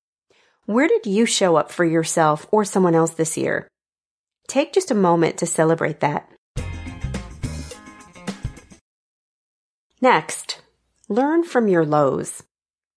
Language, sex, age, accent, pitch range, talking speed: English, female, 40-59, American, 175-235 Hz, 110 wpm